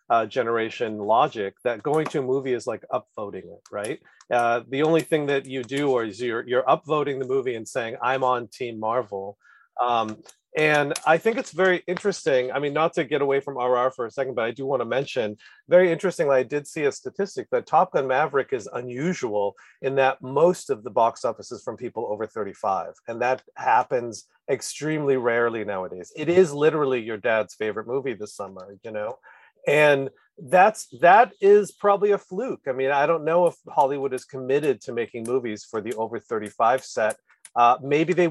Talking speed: 195 wpm